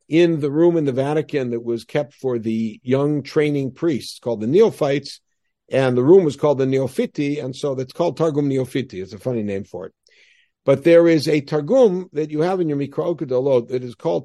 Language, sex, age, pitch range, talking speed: English, male, 60-79, 125-155 Hz, 220 wpm